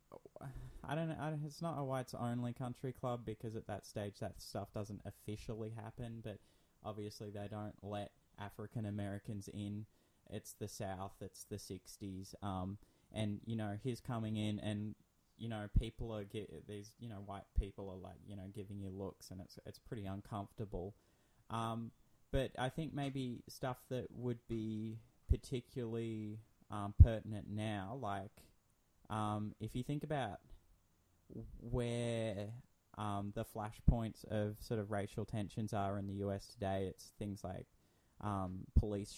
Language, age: English, 20-39